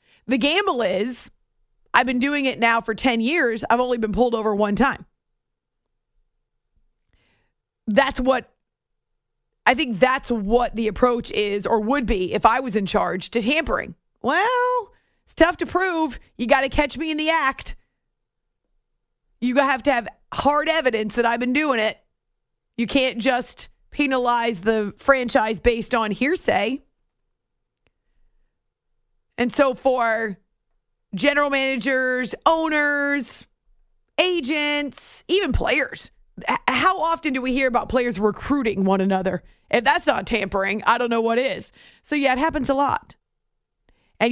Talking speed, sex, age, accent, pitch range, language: 140 wpm, female, 40-59, American, 220-280 Hz, English